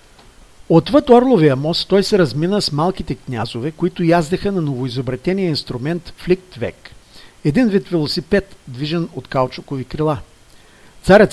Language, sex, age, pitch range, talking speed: Bulgarian, male, 50-69, 140-180 Hz, 125 wpm